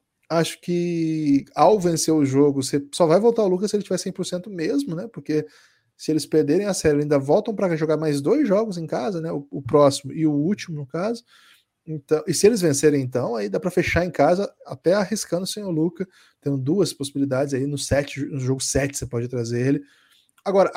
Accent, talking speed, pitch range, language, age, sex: Brazilian, 215 wpm, 130-165 Hz, Portuguese, 20-39, male